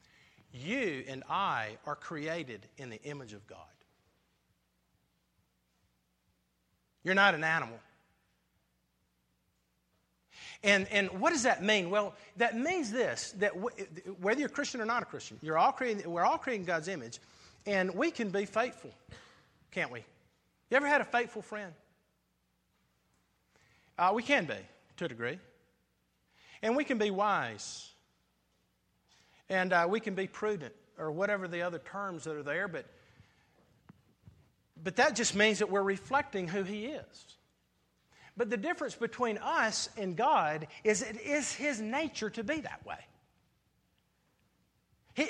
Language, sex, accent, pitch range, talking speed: English, male, American, 165-250 Hz, 145 wpm